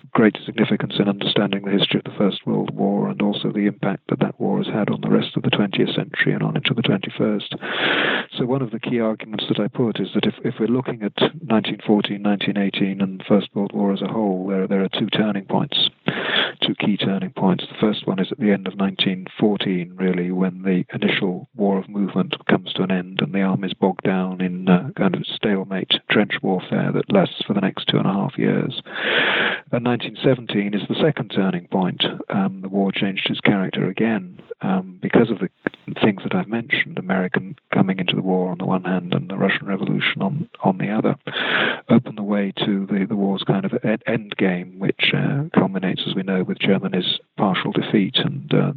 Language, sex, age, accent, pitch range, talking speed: English, male, 40-59, British, 95-110 Hz, 215 wpm